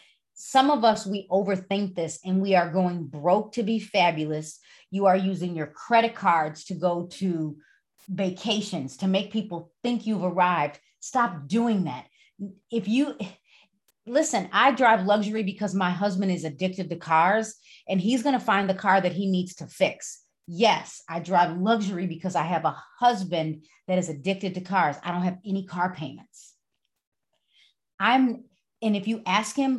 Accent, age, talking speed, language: American, 30-49, 170 wpm, English